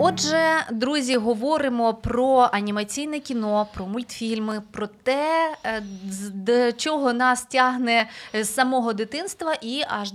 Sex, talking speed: female, 110 wpm